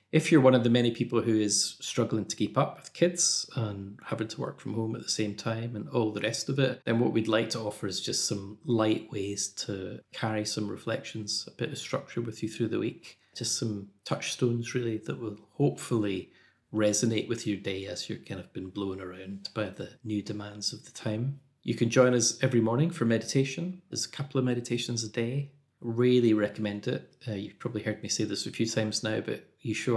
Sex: male